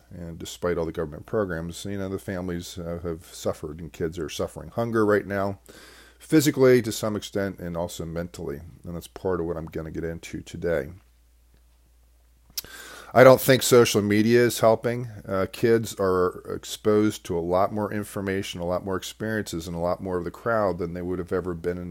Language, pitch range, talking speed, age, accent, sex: English, 85-100 Hz, 195 wpm, 40-59, American, male